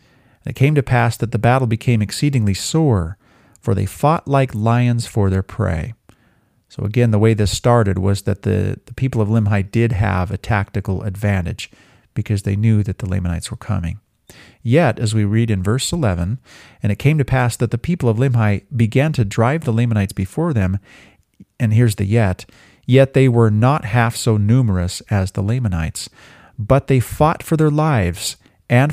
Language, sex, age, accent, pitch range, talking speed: English, male, 40-59, American, 100-125 Hz, 185 wpm